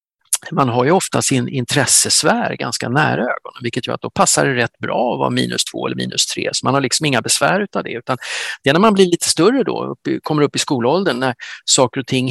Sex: male